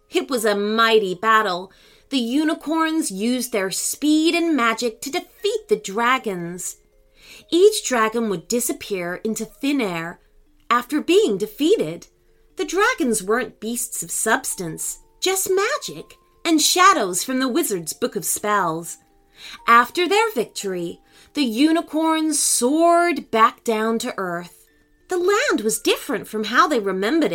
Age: 30-49